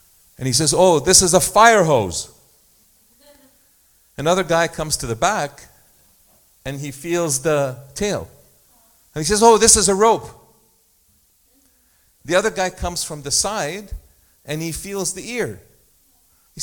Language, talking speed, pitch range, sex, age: English, 150 wpm, 130-185 Hz, male, 40-59